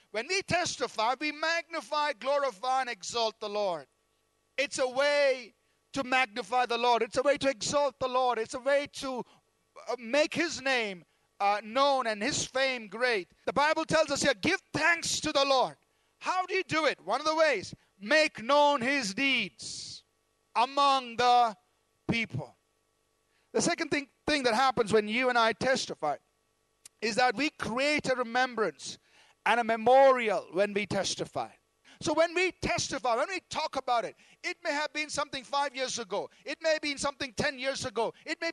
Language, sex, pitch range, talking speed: English, male, 225-285 Hz, 175 wpm